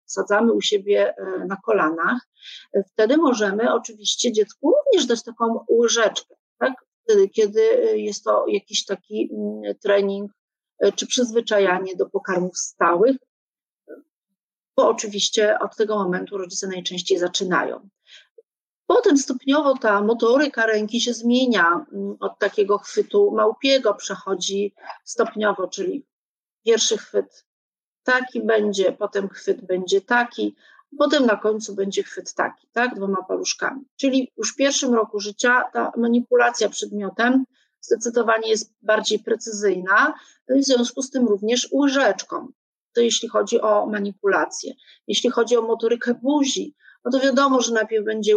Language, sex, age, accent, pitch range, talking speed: Polish, female, 40-59, native, 205-260 Hz, 125 wpm